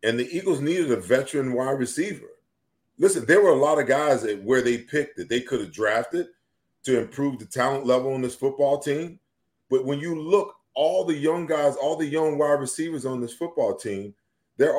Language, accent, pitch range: English, American, 120-155 Hz